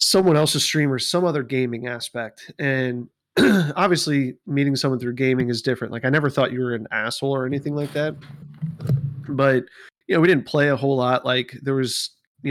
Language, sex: English, male